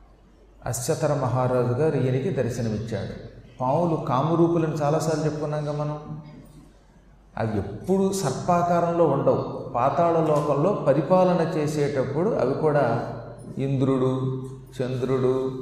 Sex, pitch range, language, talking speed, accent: male, 130-170 Hz, Telugu, 85 wpm, native